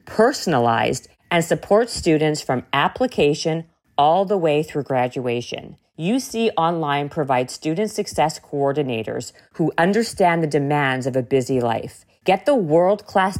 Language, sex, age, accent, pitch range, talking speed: English, female, 40-59, American, 145-190 Hz, 125 wpm